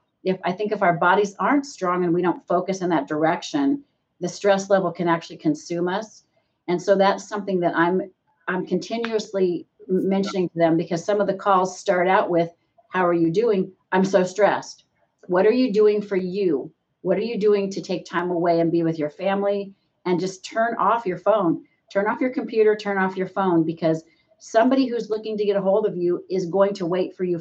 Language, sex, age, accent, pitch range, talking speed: English, female, 40-59, American, 170-200 Hz, 210 wpm